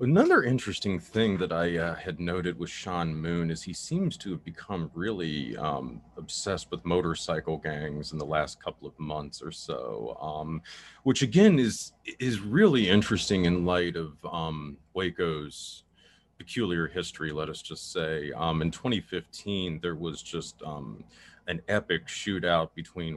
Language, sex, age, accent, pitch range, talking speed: English, male, 30-49, American, 80-95 Hz, 155 wpm